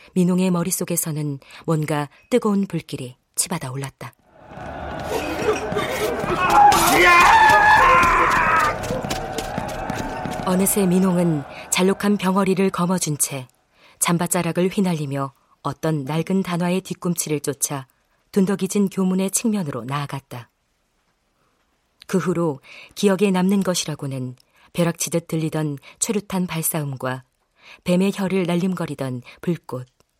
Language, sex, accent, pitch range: Korean, female, native, 145-190 Hz